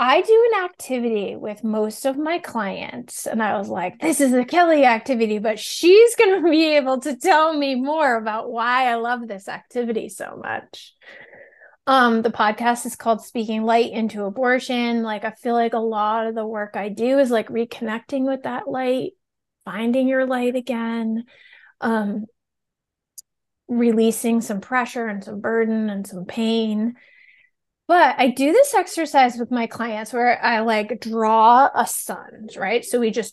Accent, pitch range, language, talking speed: American, 220-270 Hz, English, 170 wpm